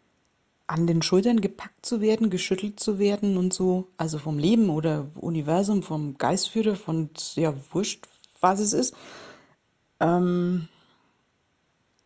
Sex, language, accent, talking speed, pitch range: female, German, German, 125 wpm, 185-230 Hz